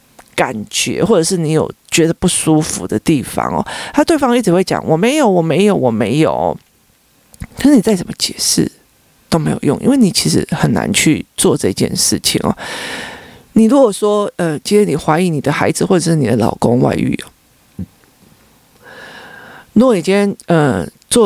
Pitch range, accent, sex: 155-200 Hz, native, male